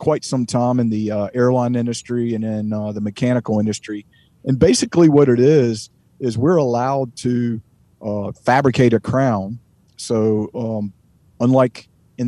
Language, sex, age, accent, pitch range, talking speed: English, male, 40-59, American, 110-130 Hz, 150 wpm